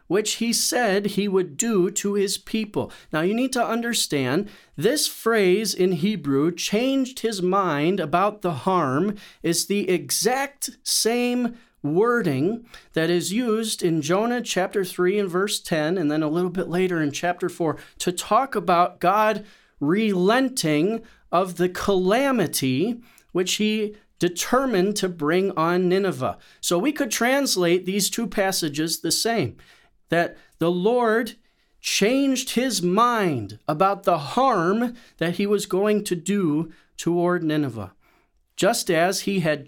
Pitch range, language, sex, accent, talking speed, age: 175-225 Hz, English, male, American, 140 wpm, 40-59